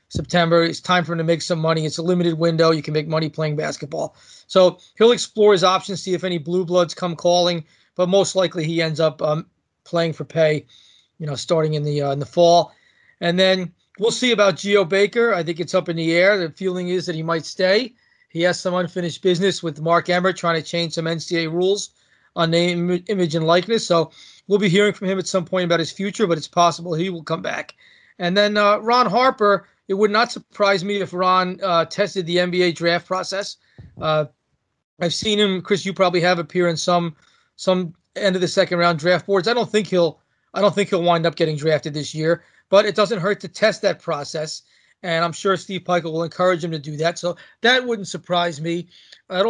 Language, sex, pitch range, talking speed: English, male, 165-195 Hz, 225 wpm